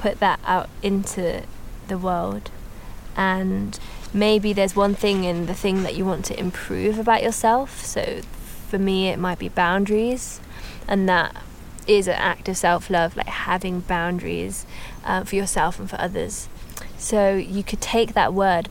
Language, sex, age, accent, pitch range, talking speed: English, female, 20-39, British, 175-205 Hz, 160 wpm